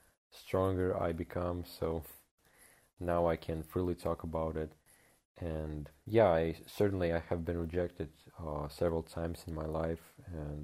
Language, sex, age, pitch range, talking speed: English, male, 30-49, 80-95 Hz, 145 wpm